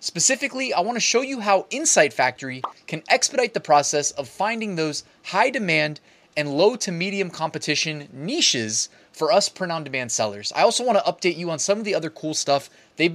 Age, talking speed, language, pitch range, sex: 20-39, 190 wpm, English, 135-185 Hz, male